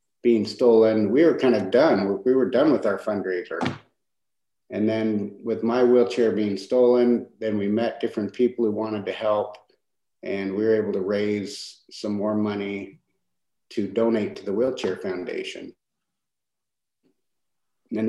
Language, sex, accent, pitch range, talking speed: English, male, American, 105-120 Hz, 150 wpm